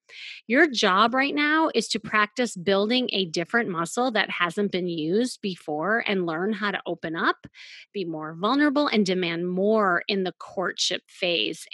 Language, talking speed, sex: English, 165 wpm, female